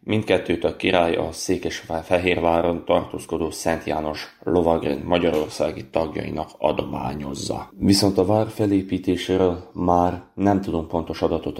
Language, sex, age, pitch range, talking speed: Hungarian, male, 30-49, 80-95 Hz, 110 wpm